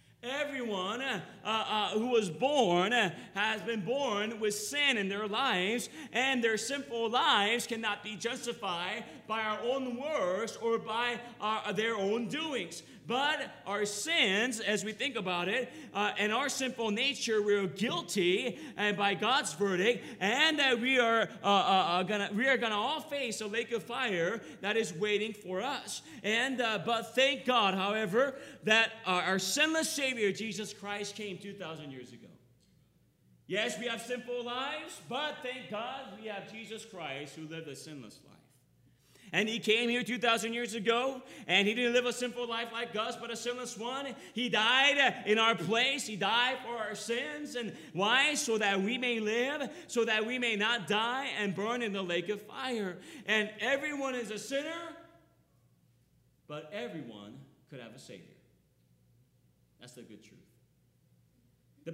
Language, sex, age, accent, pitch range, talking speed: English, male, 40-59, American, 200-250 Hz, 170 wpm